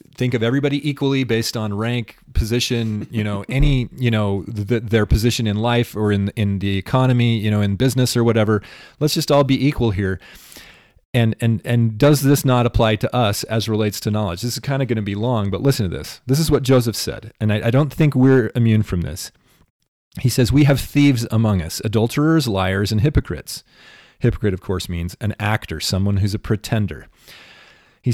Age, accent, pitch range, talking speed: 30-49, American, 105-135 Hz, 205 wpm